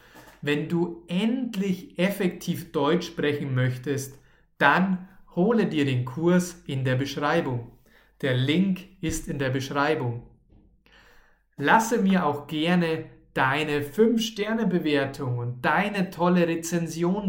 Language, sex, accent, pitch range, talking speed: German, male, German, 135-175 Hz, 110 wpm